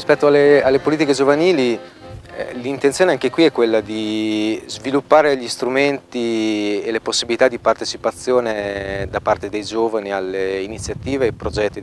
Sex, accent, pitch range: male, native, 100-125 Hz